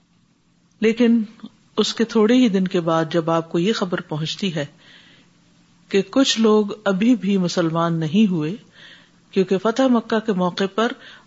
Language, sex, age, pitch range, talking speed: Urdu, female, 50-69, 175-215 Hz, 155 wpm